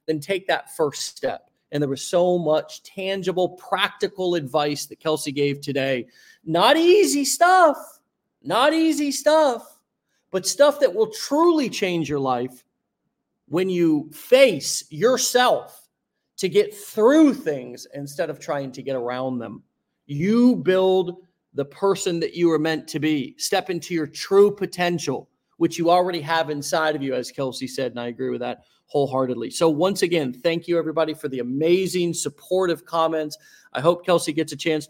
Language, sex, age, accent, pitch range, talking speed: English, male, 40-59, American, 140-185 Hz, 160 wpm